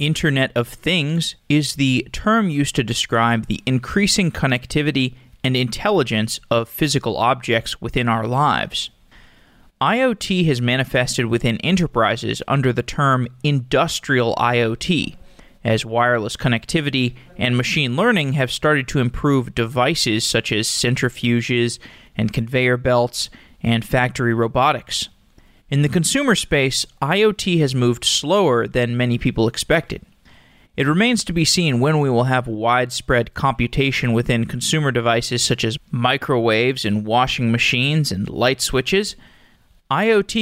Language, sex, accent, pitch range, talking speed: English, male, American, 120-155 Hz, 130 wpm